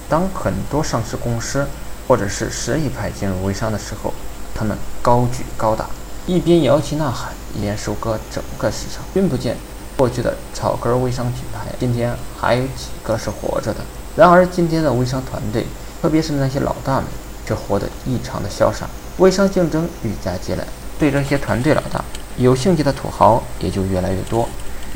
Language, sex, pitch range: Chinese, male, 110-145 Hz